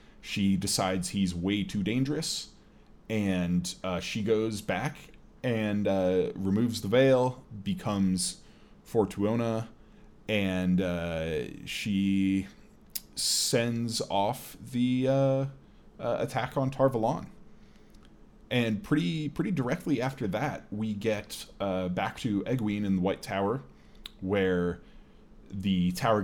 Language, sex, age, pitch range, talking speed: English, male, 20-39, 95-110 Hz, 110 wpm